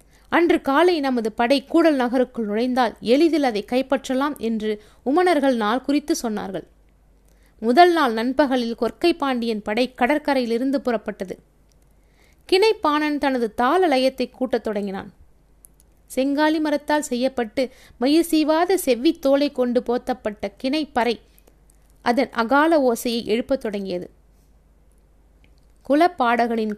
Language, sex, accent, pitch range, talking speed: Tamil, female, native, 225-290 Hz, 95 wpm